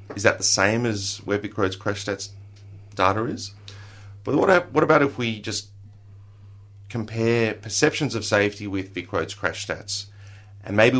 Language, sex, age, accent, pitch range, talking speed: English, male, 30-49, Australian, 100-110 Hz, 160 wpm